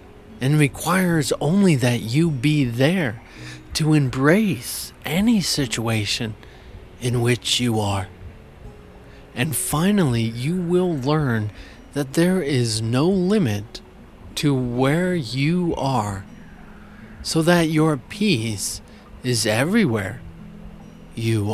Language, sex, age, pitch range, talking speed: English, male, 30-49, 110-160 Hz, 100 wpm